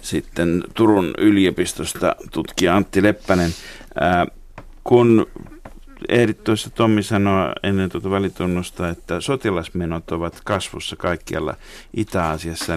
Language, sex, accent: Finnish, male, native